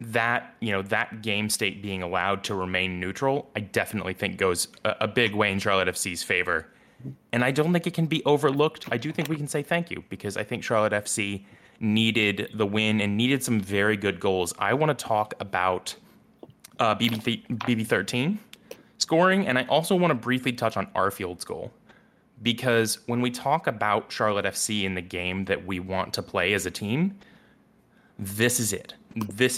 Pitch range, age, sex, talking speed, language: 105-130 Hz, 20-39, male, 190 wpm, English